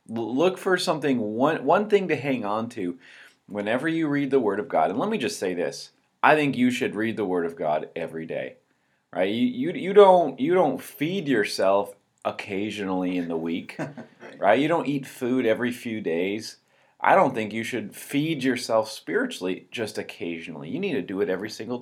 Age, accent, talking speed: 30-49, American, 200 wpm